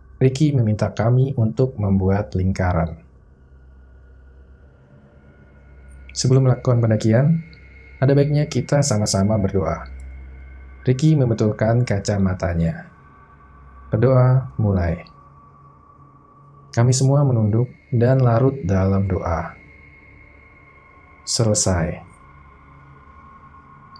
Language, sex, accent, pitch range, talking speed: Indonesian, male, native, 85-130 Hz, 70 wpm